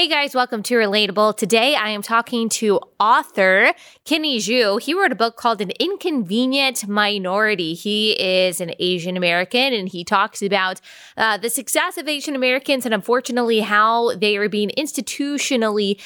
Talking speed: 160 wpm